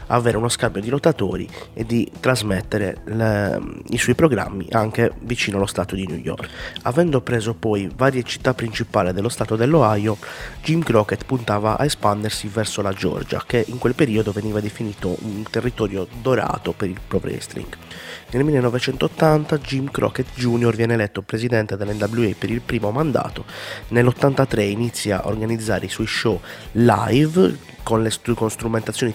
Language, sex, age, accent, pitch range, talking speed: Italian, male, 30-49, native, 105-130 Hz, 150 wpm